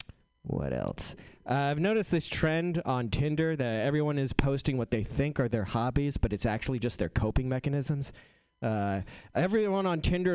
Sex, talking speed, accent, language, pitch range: male, 175 wpm, American, English, 115-165 Hz